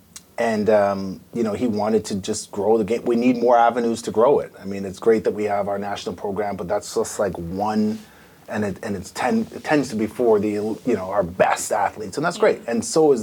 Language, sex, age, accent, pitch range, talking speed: English, male, 30-49, American, 95-115 Hz, 250 wpm